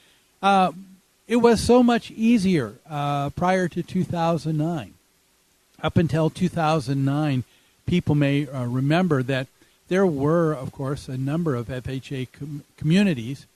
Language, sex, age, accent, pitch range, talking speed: English, male, 50-69, American, 140-185 Hz, 120 wpm